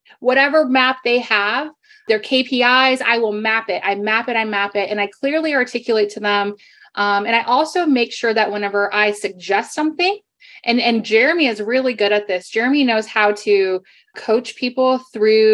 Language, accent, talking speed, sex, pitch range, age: English, American, 185 wpm, female, 200-245 Hz, 20-39